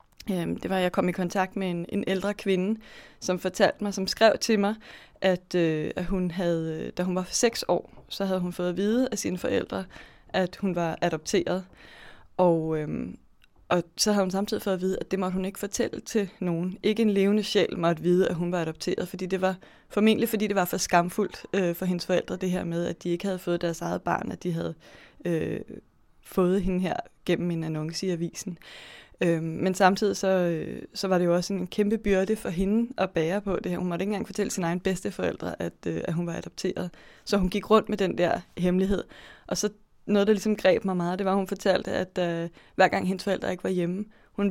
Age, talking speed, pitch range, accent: 20-39, 225 wpm, 175-200 Hz, native